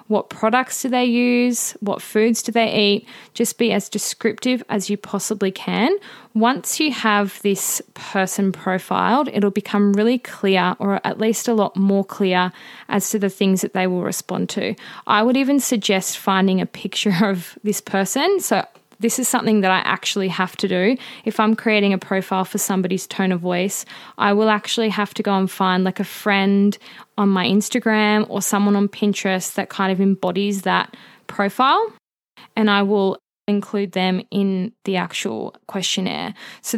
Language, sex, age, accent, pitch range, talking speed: English, female, 20-39, Australian, 190-225 Hz, 175 wpm